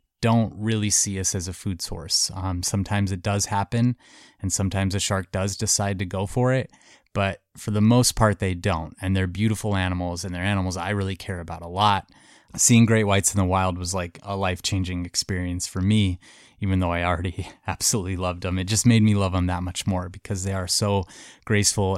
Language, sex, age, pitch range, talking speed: English, male, 20-39, 95-110 Hz, 210 wpm